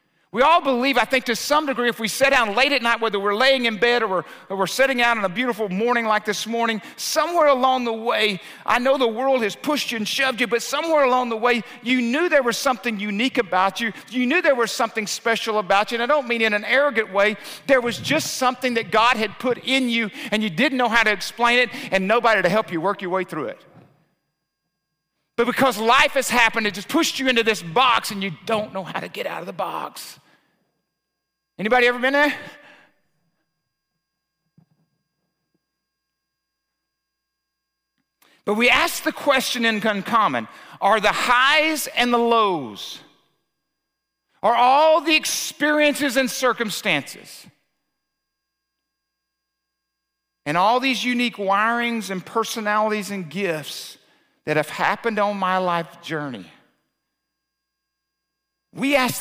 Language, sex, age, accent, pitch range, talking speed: English, male, 50-69, American, 180-255 Hz, 170 wpm